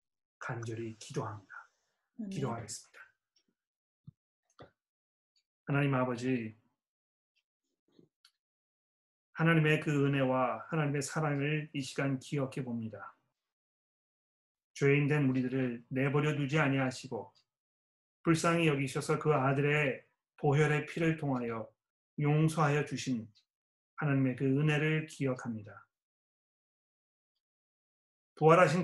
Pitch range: 130-155 Hz